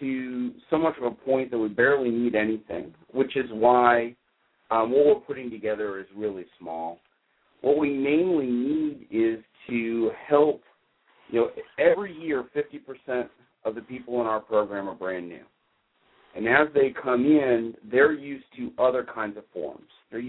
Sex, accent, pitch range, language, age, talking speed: male, American, 100-125 Hz, English, 50-69, 165 wpm